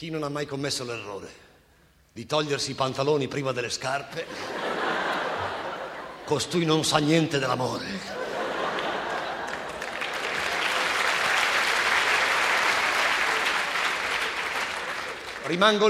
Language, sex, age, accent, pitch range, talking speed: Italian, male, 50-69, native, 140-230 Hz, 70 wpm